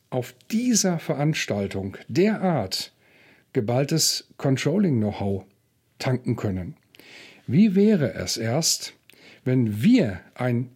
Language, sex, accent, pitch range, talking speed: German, male, German, 115-175 Hz, 85 wpm